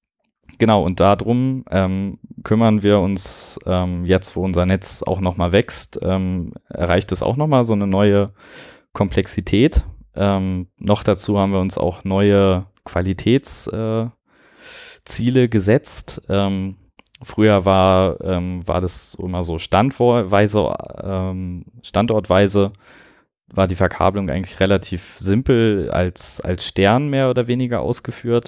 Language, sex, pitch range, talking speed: German, male, 90-105 Hz, 130 wpm